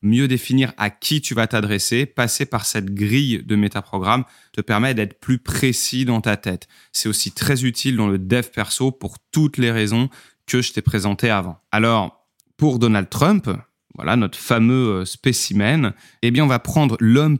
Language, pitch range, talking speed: French, 105-130 Hz, 180 wpm